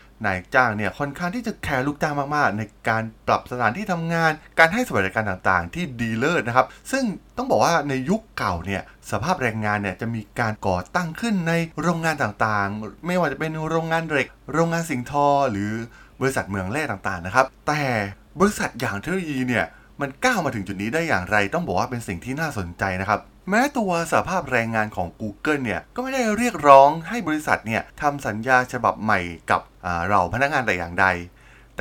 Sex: male